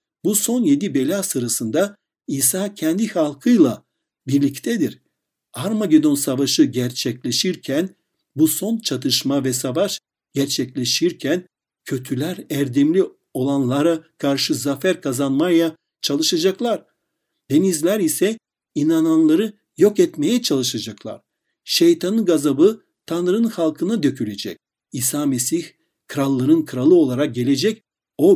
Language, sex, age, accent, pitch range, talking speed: Turkish, male, 60-79, native, 130-200 Hz, 90 wpm